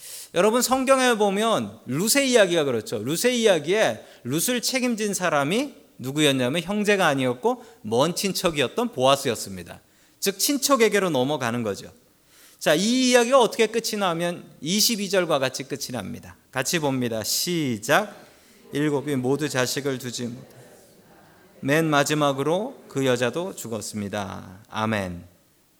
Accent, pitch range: native, 130-215 Hz